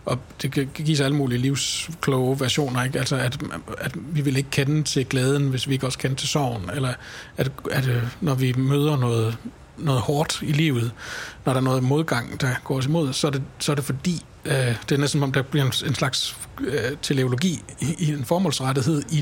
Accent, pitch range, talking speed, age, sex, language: native, 125-150 Hz, 205 wpm, 60-79, male, Danish